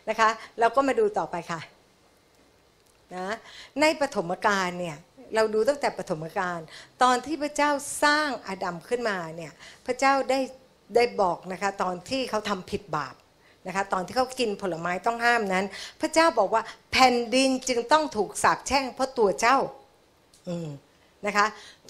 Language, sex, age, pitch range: Thai, female, 60-79, 185-255 Hz